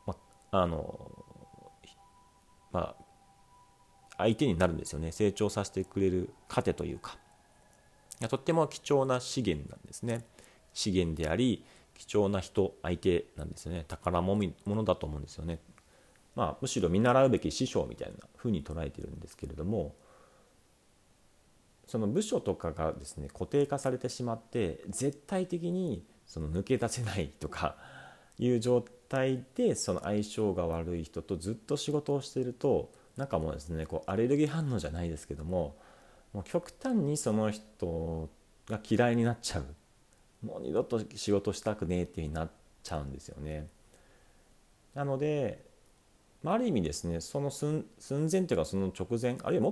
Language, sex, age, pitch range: Japanese, male, 40-59, 80-125 Hz